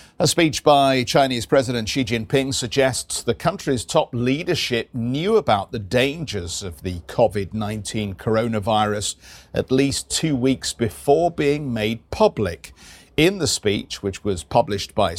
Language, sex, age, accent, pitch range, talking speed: English, male, 50-69, British, 105-140 Hz, 140 wpm